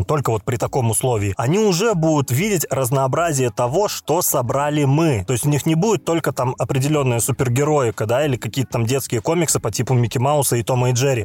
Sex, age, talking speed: male, 20-39, 205 wpm